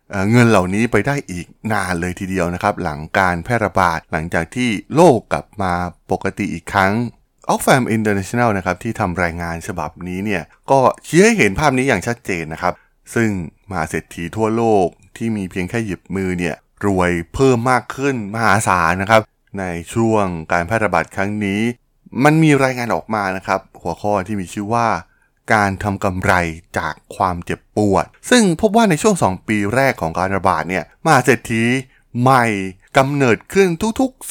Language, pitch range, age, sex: Thai, 90-120 Hz, 20-39, male